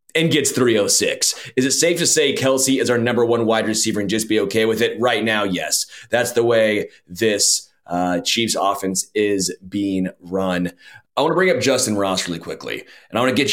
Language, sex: English, male